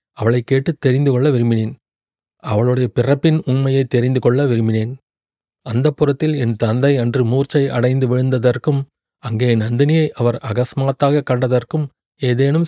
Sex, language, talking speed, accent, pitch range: male, Tamil, 115 wpm, native, 120-140 Hz